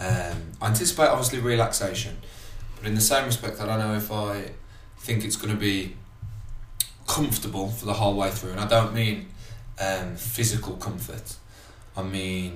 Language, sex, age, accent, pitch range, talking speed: English, male, 20-39, British, 95-110 Hz, 165 wpm